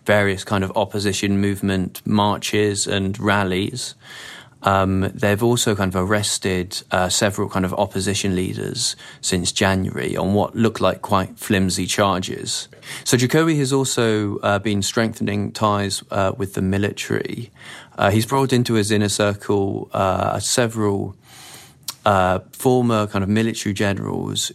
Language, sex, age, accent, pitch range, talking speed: English, male, 20-39, British, 100-110 Hz, 135 wpm